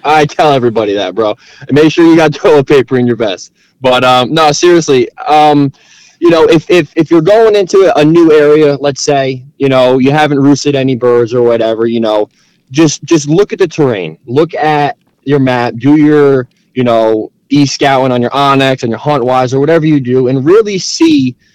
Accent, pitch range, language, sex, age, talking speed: American, 120-150 Hz, English, male, 20-39, 205 wpm